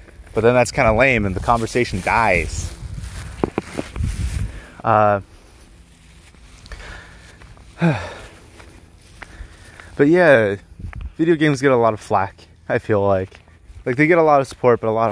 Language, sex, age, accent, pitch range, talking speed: English, male, 20-39, American, 90-120 Hz, 130 wpm